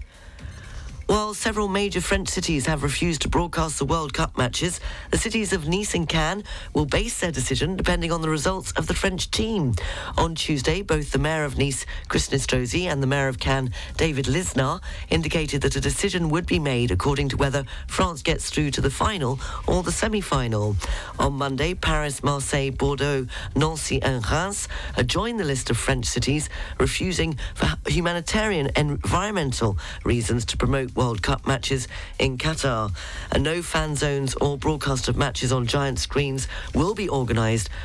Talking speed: 170 wpm